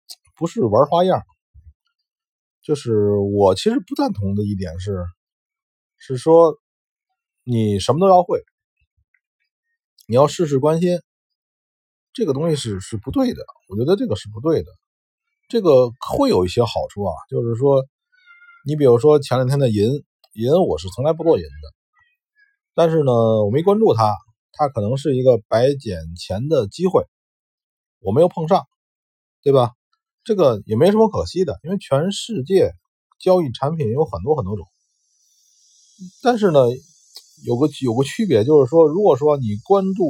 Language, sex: Chinese, male